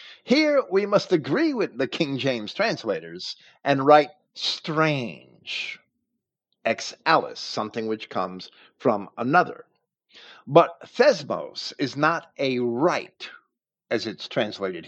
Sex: male